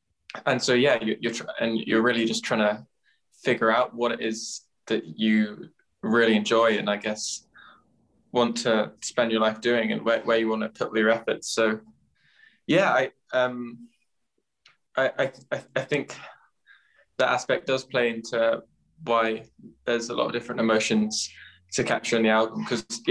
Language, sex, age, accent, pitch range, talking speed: English, male, 10-29, British, 110-120 Hz, 170 wpm